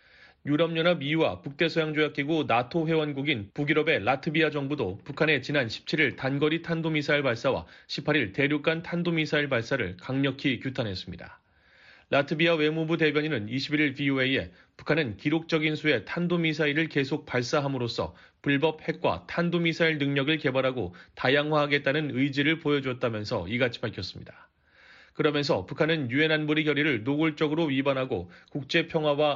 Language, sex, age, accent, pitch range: Korean, male, 30-49, native, 135-160 Hz